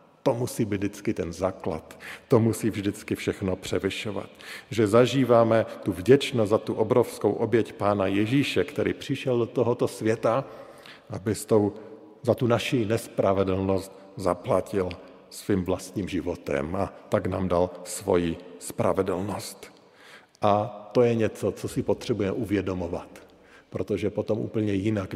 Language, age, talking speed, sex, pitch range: Slovak, 50-69, 130 wpm, male, 95-115 Hz